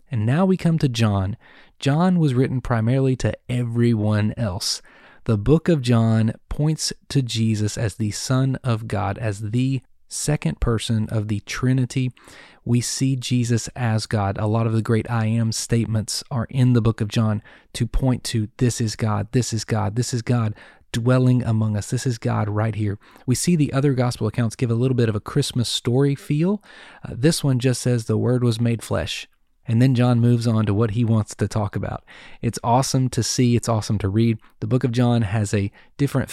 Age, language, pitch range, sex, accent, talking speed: 30-49, English, 110-130 Hz, male, American, 205 wpm